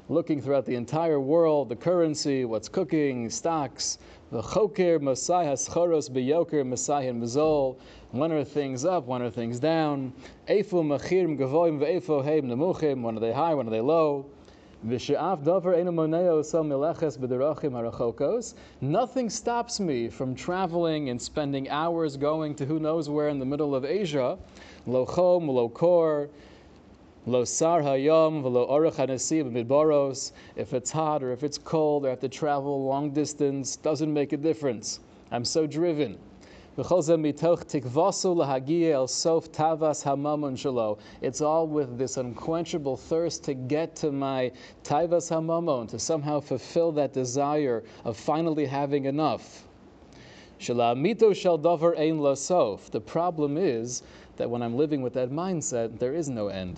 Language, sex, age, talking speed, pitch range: English, male, 20-39, 105 wpm, 130-165 Hz